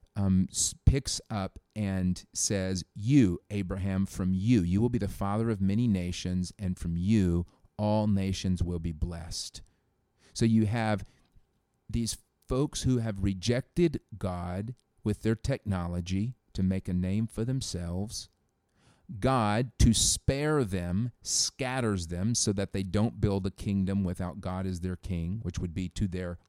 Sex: male